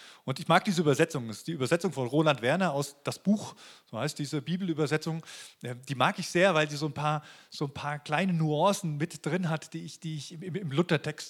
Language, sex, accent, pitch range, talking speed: German, male, German, 150-205 Hz, 200 wpm